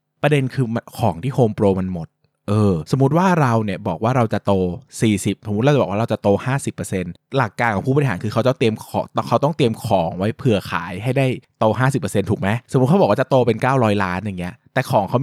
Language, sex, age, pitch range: Thai, male, 20-39, 105-145 Hz